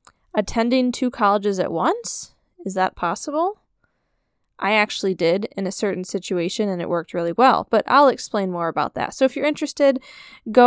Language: English